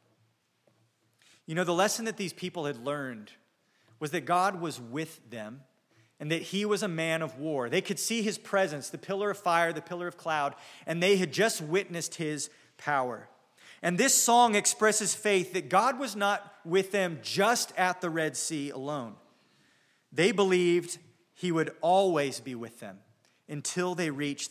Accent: American